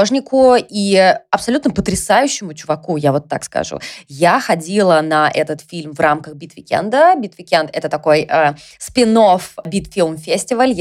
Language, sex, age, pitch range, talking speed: Russian, female, 20-39, 160-220 Hz, 120 wpm